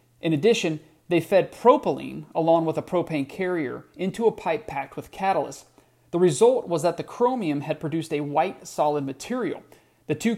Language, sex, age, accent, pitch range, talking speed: English, male, 40-59, American, 150-195 Hz, 175 wpm